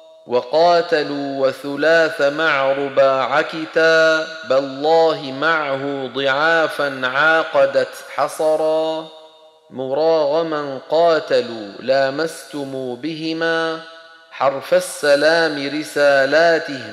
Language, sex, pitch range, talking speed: Arabic, male, 140-160 Hz, 55 wpm